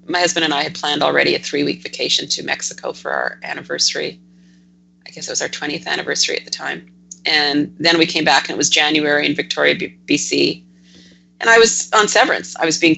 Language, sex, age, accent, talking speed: English, female, 40-59, American, 210 wpm